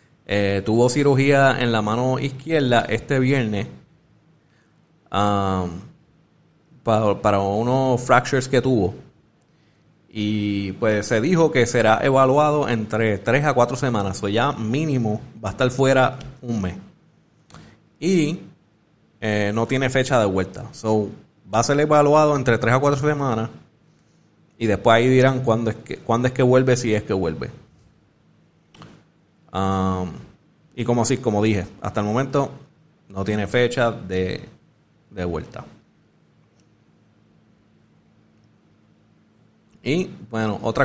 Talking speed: 130 wpm